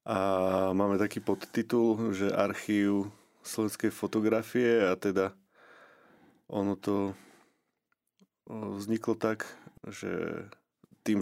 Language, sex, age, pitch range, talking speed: Slovak, male, 30-49, 95-105 Hz, 85 wpm